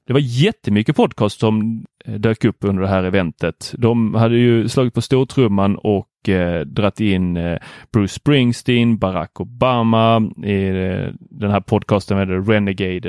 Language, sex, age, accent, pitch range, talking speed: Swedish, male, 30-49, native, 100-130 Hz, 155 wpm